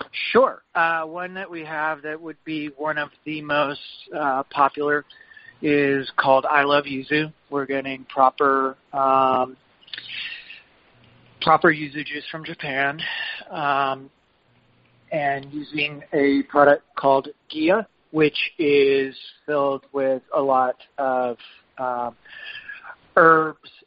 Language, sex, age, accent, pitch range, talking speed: English, male, 40-59, American, 130-150 Hz, 115 wpm